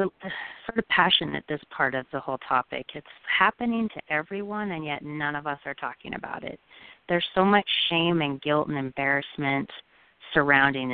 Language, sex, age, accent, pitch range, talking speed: English, female, 30-49, American, 135-165 Hz, 170 wpm